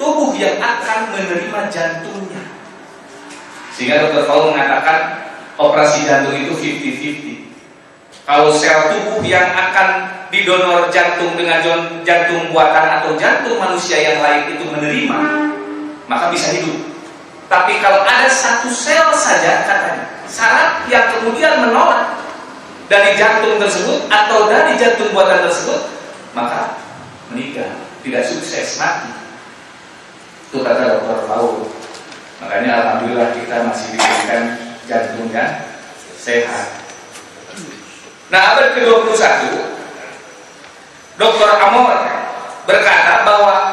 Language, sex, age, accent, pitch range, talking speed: English, male, 40-59, Indonesian, 155-225 Hz, 105 wpm